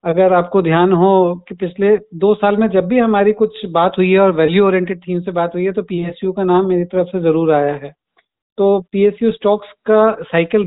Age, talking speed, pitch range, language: 40-59, 220 wpm, 180-225 Hz, Hindi